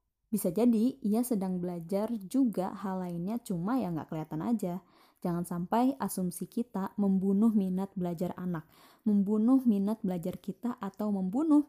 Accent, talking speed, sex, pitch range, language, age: native, 145 wpm, female, 180-225 Hz, Indonesian, 20-39